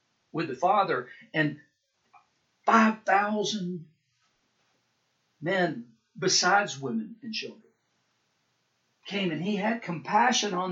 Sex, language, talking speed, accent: male, English, 90 wpm, American